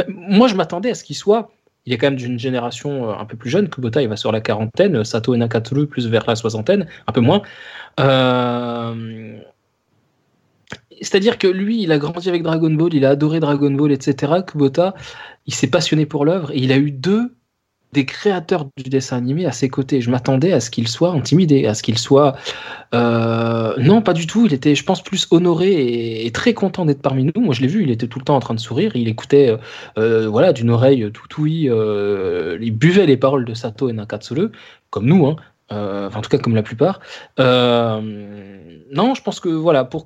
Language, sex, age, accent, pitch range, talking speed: French, male, 20-39, French, 120-165 Hz, 215 wpm